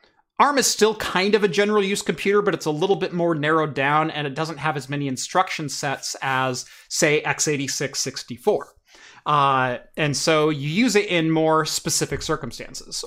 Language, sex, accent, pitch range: English, male, American, 140-180 Hz